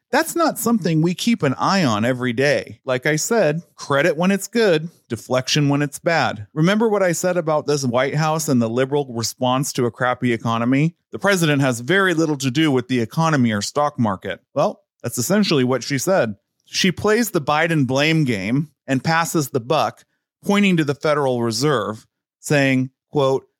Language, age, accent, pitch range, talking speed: English, 30-49, American, 125-165 Hz, 185 wpm